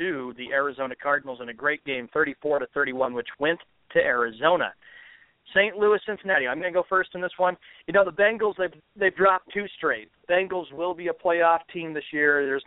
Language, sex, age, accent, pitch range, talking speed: English, male, 40-59, American, 145-190 Hz, 205 wpm